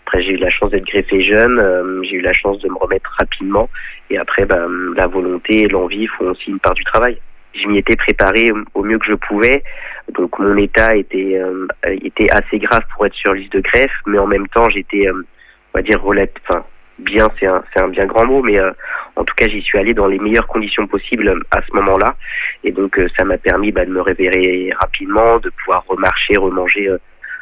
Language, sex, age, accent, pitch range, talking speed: French, male, 20-39, French, 95-105 Hz, 230 wpm